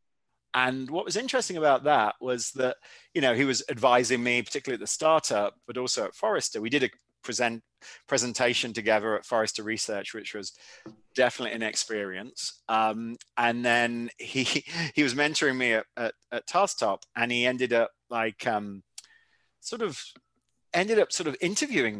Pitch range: 115-145 Hz